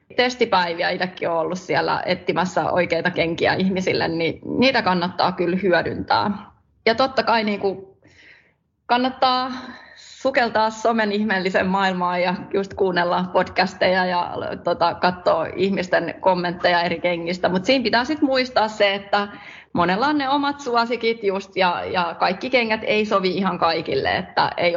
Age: 30-49